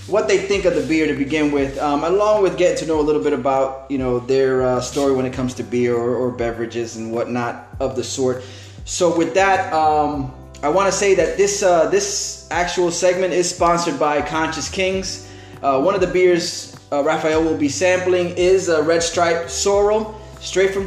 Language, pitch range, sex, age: English, 140-185 Hz, male, 20-39